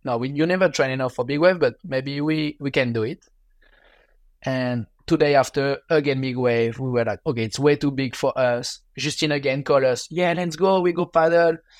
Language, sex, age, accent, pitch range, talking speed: English, male, 20-39, French, 125-150 Hz, 215 wpm